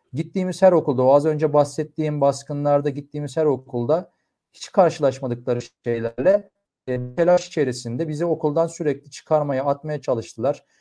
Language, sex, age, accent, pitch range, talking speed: Turkish, male, 40-59, native, 125-155 Hz, 130 wpm